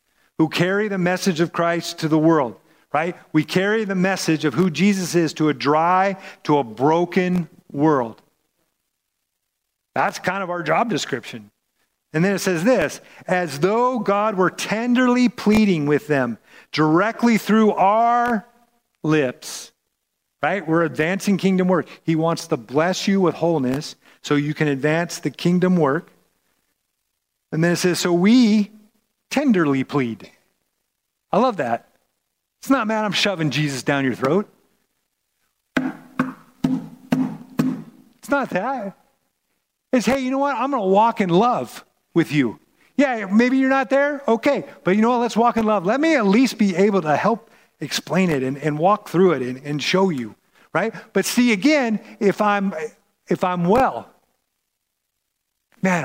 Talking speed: 155 wpm